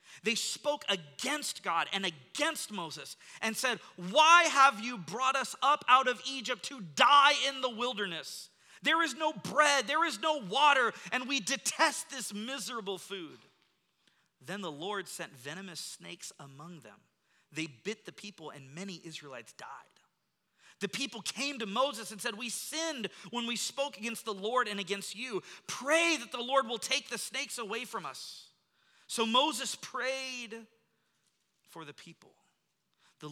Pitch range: 165-250 Hz